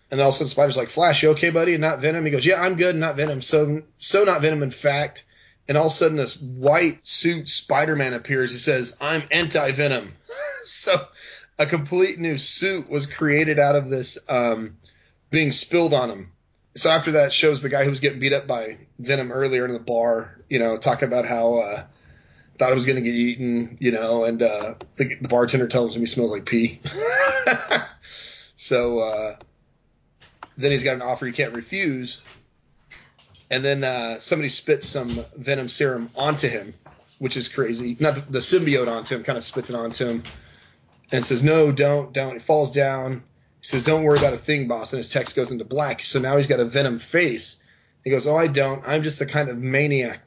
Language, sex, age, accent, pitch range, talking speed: English, male, 30-49, American, 120-150 Hz, 205 wpm